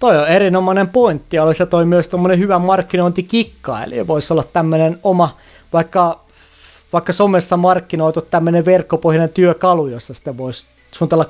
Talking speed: 145 wpm